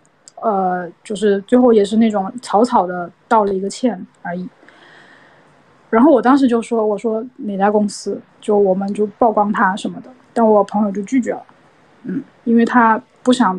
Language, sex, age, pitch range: Chinese, female, 20-39, 205-250 Hz